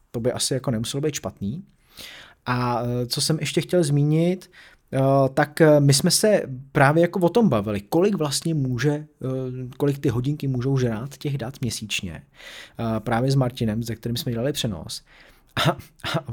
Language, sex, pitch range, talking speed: Czech, male, 120-160 Hz, 155 wpm